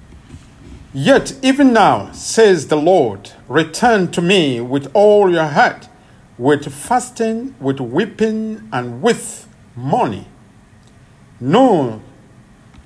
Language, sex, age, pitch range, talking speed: English, male, 50-69, 115-185 Hz, 100 wpm